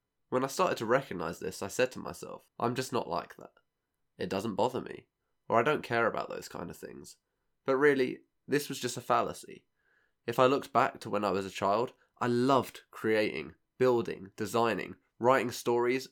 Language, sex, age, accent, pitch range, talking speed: English, male, 20-39, British, 95-120 Hz, 195 wpm